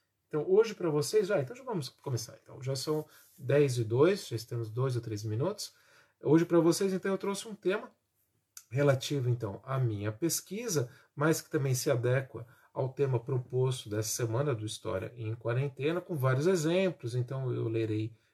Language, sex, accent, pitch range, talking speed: Portuguese, male, Brazilian, 120-160 Hz, 170 wpm